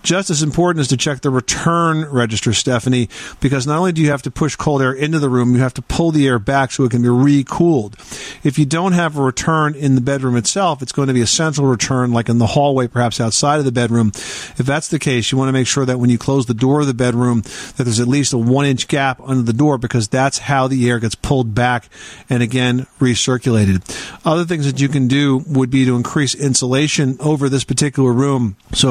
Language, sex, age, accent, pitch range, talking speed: English, male, 40-59, American, 125-145 Hz, 240 wpm